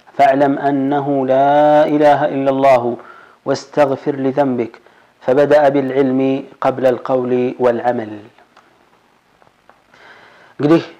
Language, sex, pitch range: Amharic, male, 130-145 Hz